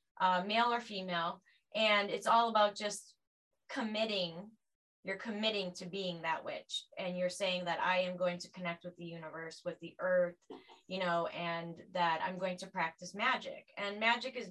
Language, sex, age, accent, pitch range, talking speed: English, female, 20-39, American, 180-215 Hz, 180 wpm